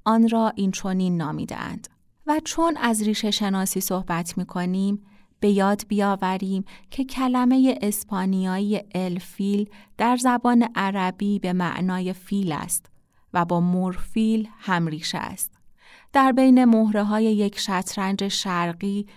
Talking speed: 120 wpm